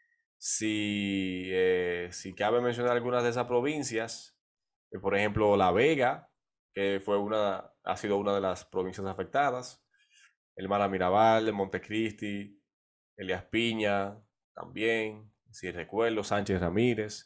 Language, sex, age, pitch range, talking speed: Spanish, male, 20-39, 105-155 Hz, 120 wpm